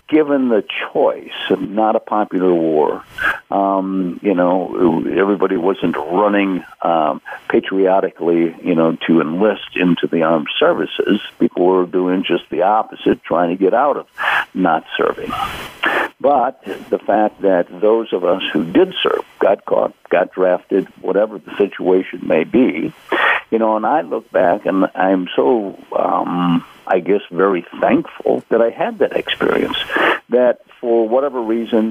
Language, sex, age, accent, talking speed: English, male, 60-79, American, 150 wpm